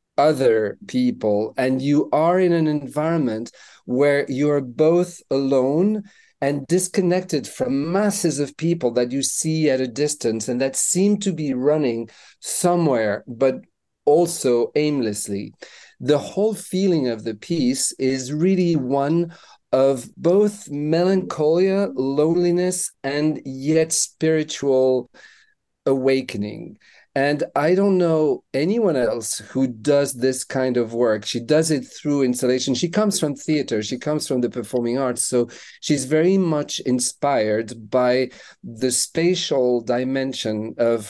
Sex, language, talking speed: male, English, 130 wpm